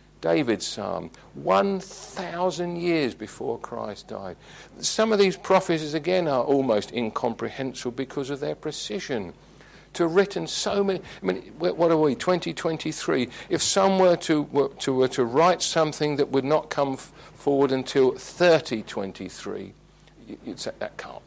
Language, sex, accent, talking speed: English, male, British, 160 wpm